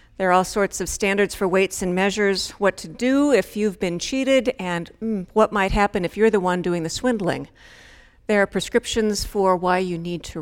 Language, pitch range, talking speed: English, 185-225 Hz, 215 wpm